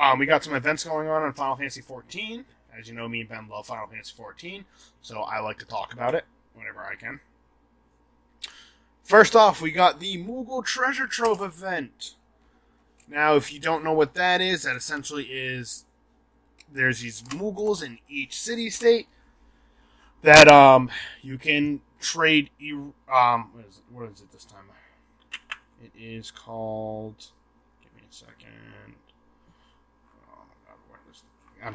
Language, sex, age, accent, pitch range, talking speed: English, male, 20-39, American, 125-155 Hz, 150 wpm